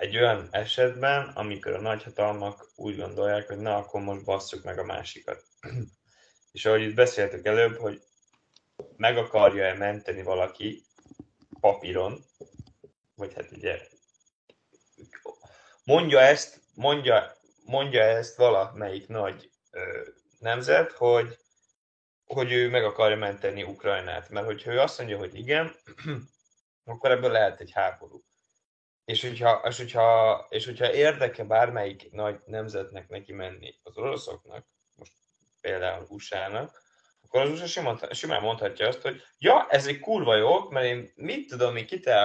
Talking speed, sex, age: 130 wpm, male, 20-39